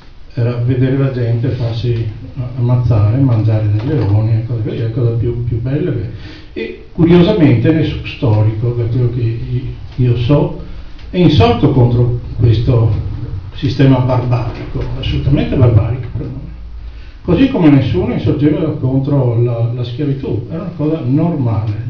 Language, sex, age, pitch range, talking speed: Italian, male, 60-79, 110-135 Hz, 130 wpm